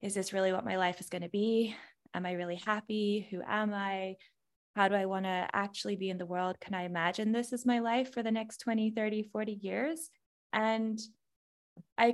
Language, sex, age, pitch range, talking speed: English, female, 20-39, 180-210 Hz, 215 wpm